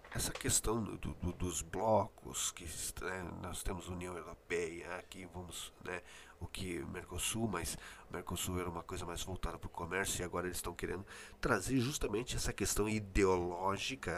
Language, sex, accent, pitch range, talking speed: Portuguese, male, Brazilian, 85-100 Hz, 160 wpm